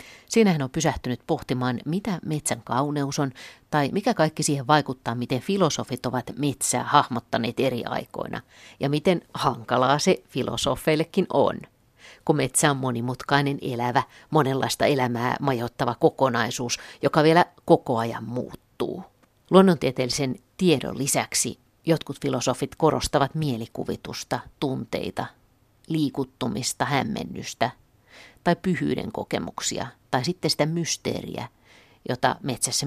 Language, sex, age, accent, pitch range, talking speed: Finnish, female, 50-69, native, 125-155 Hz, 110 wpm